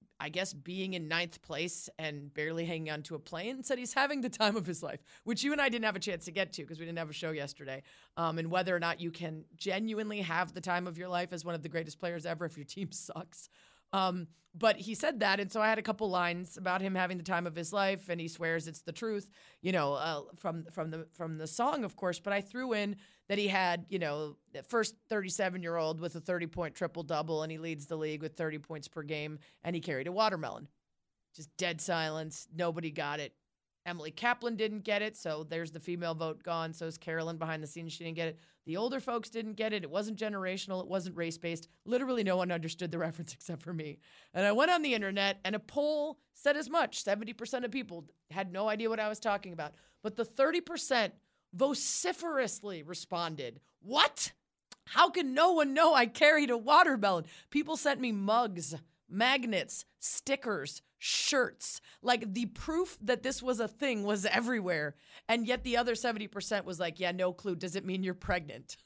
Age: 30-49